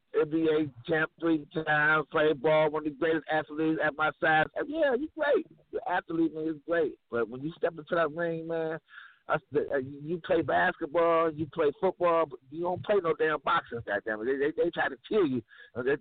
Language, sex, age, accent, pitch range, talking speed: English, male, 50-69, American, 145-175 Hz, 200 wpm